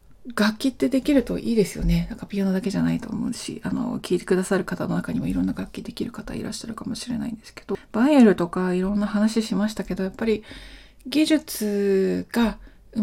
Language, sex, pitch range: Japanese, female, 180-230 Hz